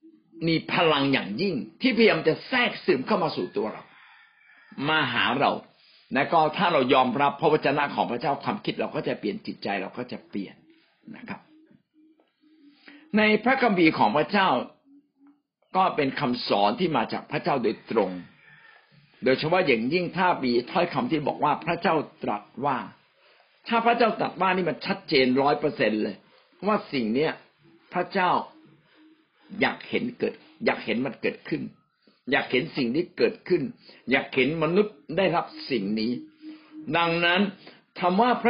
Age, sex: 60-79, male